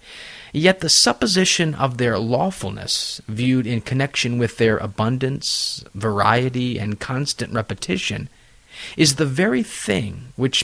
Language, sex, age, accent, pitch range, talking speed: English, male, 30-49, American, 115-140 Hz, 120 wpm